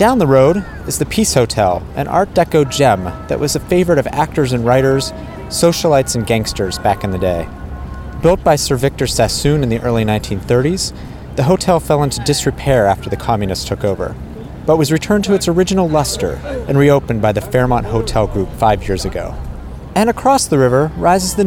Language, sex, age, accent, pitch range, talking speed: English, male, 30-49, American, 100-155 Hz, 190 wpm